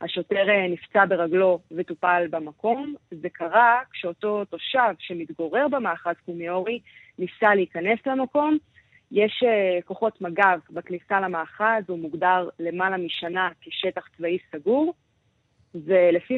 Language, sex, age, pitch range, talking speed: Hebrew, female, 20-39, 175-225 Hz, 105 wpm